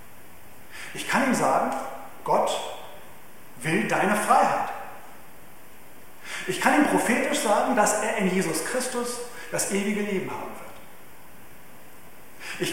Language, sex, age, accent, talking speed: German, male, 40-59, German, 115 wpm